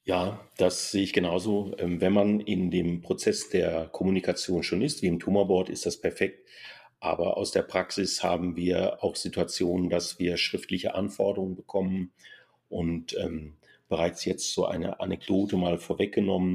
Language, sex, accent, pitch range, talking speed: German, male, German, 85-95 Hz, 150 wpm